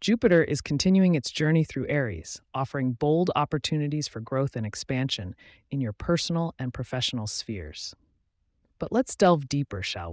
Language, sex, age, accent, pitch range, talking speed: English, female, 30-49, American, 110-160 Hz, 150 wpm